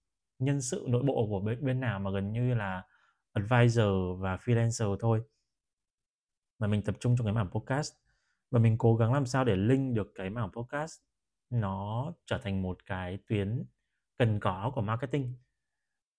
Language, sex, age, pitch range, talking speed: Vietnamese, male, 20-39, 95-120 Hz, 170 wpm